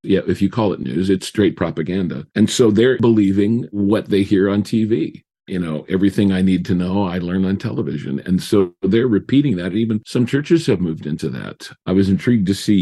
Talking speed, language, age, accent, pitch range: 215 wpm, English, 50-69, American, 90-105 Hz